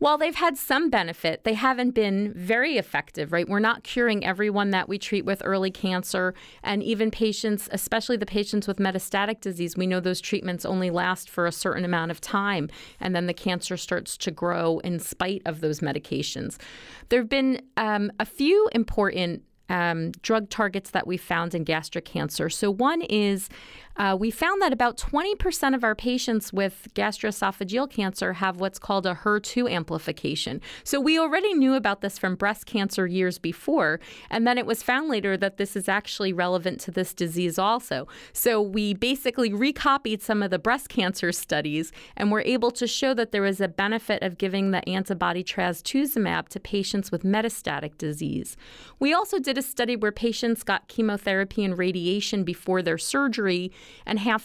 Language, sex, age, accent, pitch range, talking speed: English, female, 40-59, American, 185-230 Hz, 180 wpm